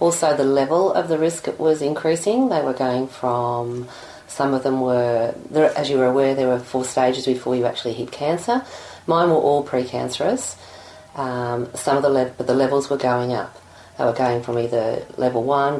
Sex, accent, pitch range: female, Australian, 120-145 Hz